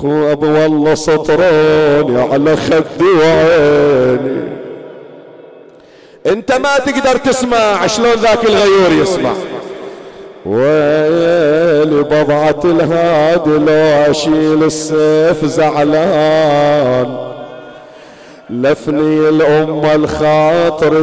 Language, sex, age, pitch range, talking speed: Arabic, male, 50-69, 150-160 Hz, 70 wpm